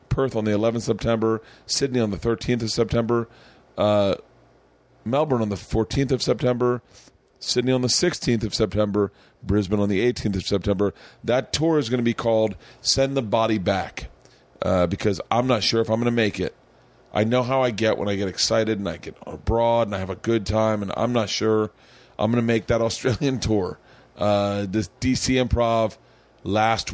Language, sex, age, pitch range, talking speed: English, male, 40-59, 95-115 Hz, 195 wpm